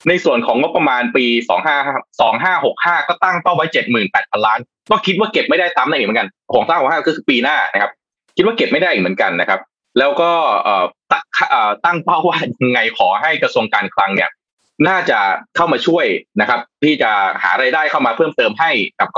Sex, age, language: male, 20-39, Thai